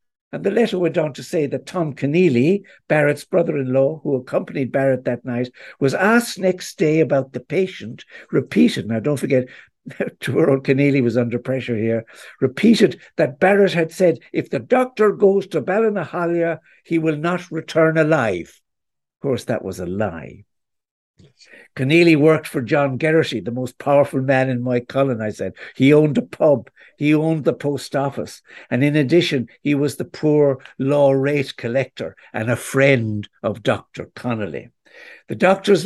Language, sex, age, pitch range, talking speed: English, male, 60-79, 130-175 Hz, 160 wpm